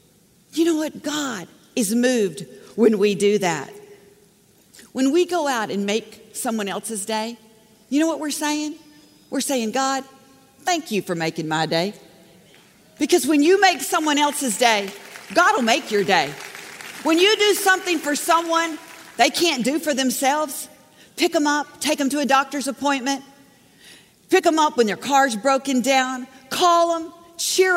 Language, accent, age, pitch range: English, American, 50-69, 215-325 Hz